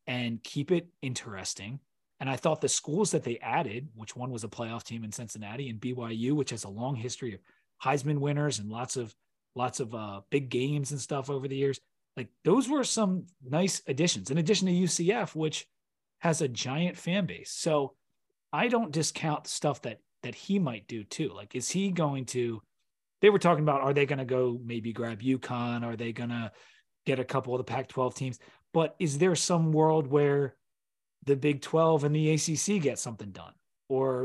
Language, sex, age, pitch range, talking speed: English, male, 30-49, 125-155 Hz, 200 wpm